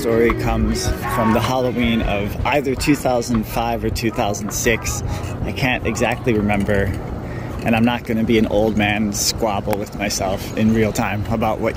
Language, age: English, 30-49